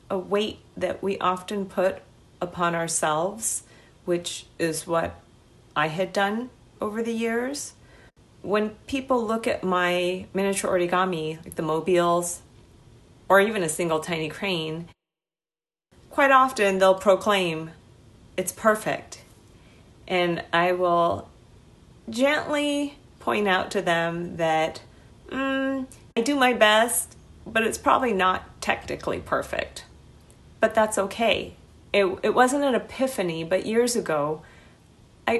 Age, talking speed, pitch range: 40-59, 120 wpm, 165-215 Hz